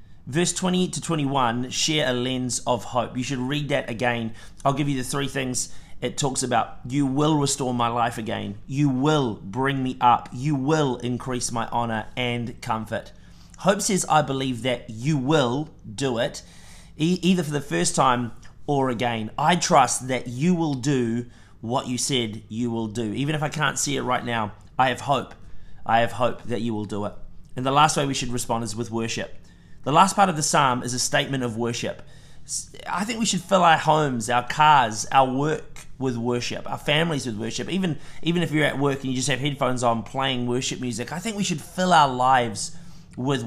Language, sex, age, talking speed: English, male, 30-49, 205 wpm